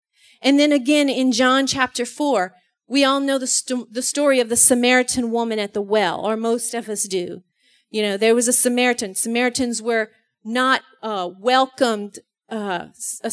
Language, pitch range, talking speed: English, 220-275 Hz, 175 wpm